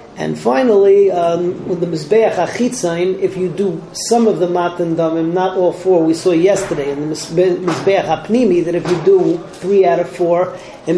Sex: male